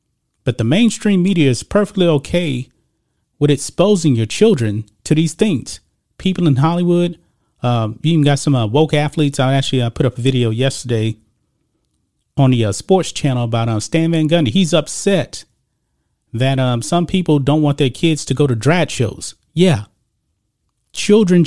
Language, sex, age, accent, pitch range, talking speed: English, male, 40-59, American, 120-160 Hz, 170 wpm